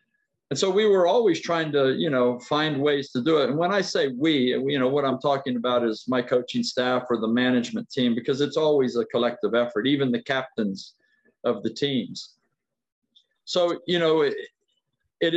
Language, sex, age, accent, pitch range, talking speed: Filipino, male, 50-69, American, 130-155 Hz, 195 wpm